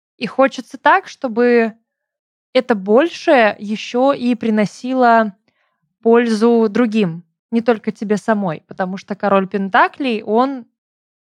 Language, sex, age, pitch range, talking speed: Russian, female, 20-39, 190-245 Hz, 105 wpm